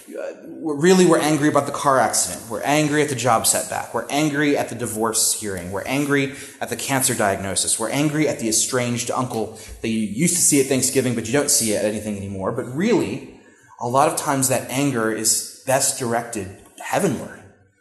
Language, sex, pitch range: English, male, 115-155 Hz